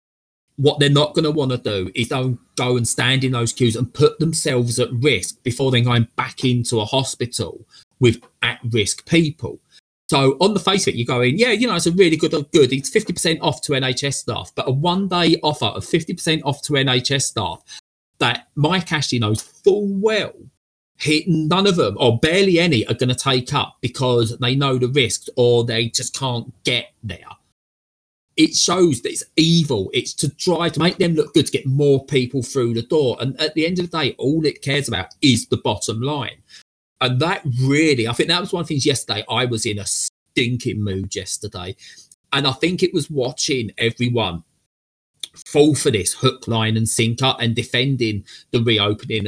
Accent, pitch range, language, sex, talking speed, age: British, 120-155 Hz, English, male, 200 wpm, 30-49